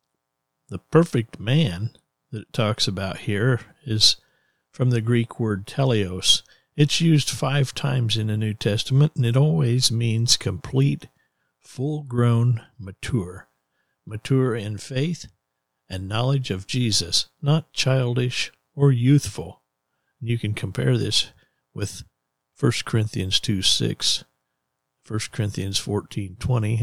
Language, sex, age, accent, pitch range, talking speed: English, male, 50-69, American, 95-130 Hz, 115 wpm